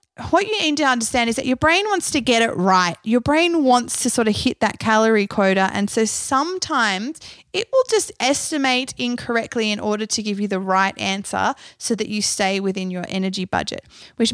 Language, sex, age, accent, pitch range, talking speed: English, female, 20-39, Australian, 195-250 Hz, 205 wpm